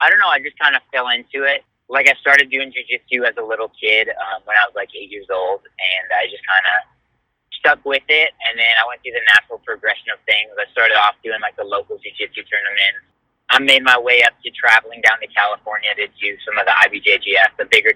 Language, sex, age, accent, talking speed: English, male, 30-49, American, 240 wpm